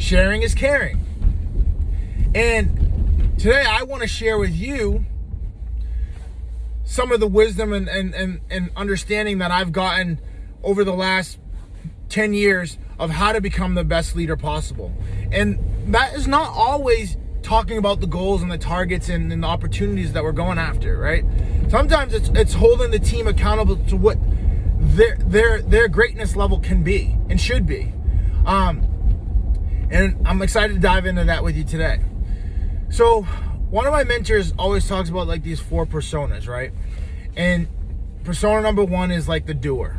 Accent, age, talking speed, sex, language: American, 20-39, 160 wpm, male, English